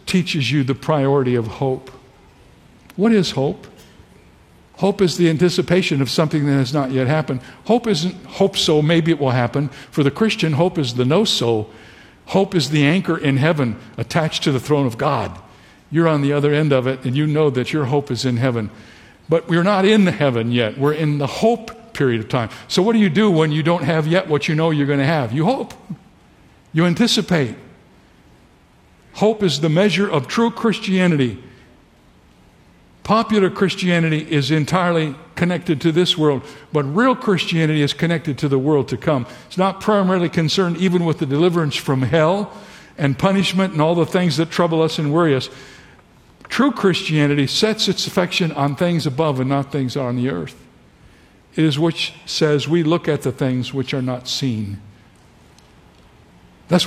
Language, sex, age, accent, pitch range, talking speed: English, male, 60-79, American, 130-175 Hz, 180 wpm